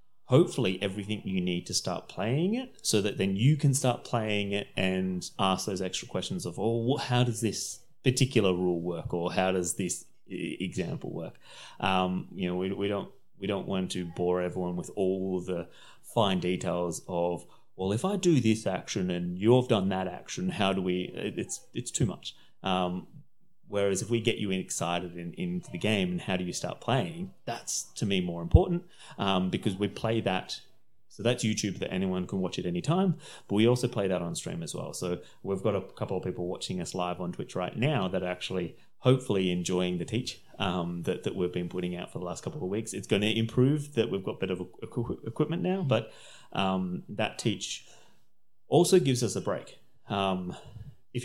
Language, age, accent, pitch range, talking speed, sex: English, 30-49, Australian, 90-120 Hz, 205 wpm, male